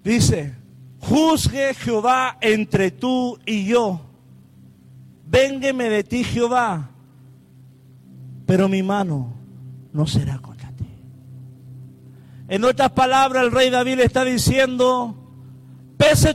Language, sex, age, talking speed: Spanish, male, 50-69, 100 wpm